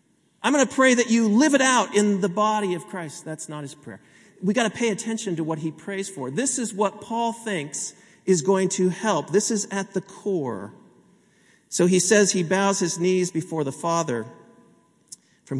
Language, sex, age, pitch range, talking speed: English, male, 40-59, 140-190 Hz, 205 wpm